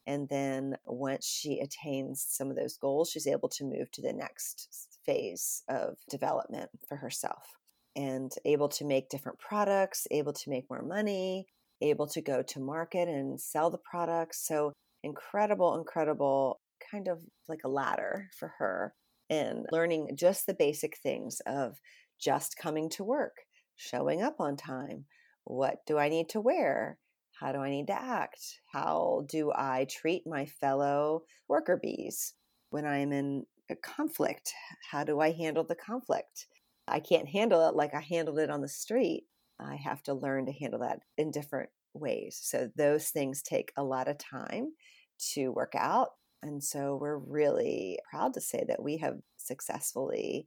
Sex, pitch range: female, 140-185 Hz